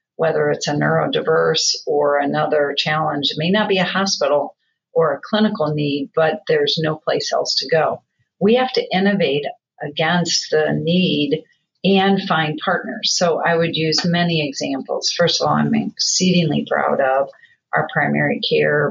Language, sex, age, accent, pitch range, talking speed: English, female, 40-59, American, 155-210 Hz, 160 wpm